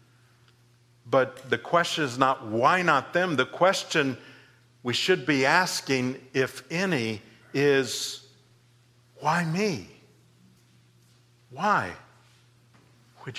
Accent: American